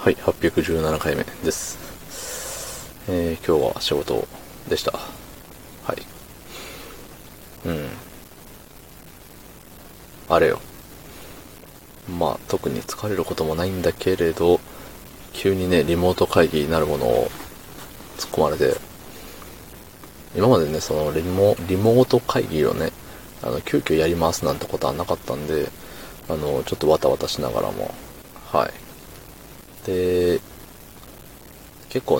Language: Japanese